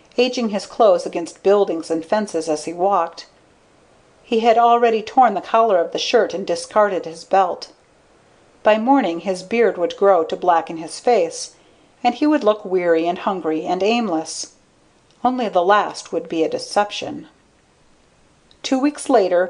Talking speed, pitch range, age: 160 wpm, 165-245 Hz, 40-59